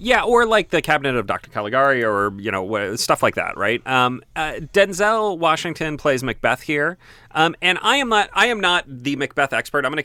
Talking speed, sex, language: 210 wpm, male, English